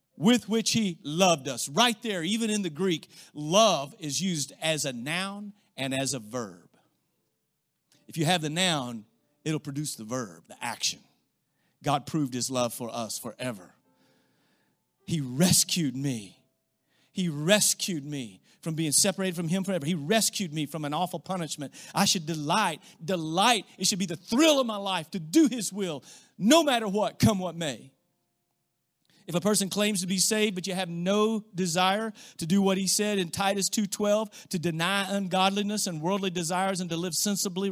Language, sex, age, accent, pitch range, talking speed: English, male, 40-59, American, 140-205 Hz, 175 wpm